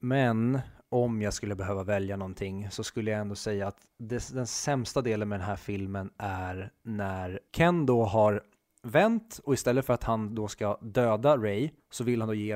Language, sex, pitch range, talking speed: Swedish, male, 105-130 Hz, 195 wpm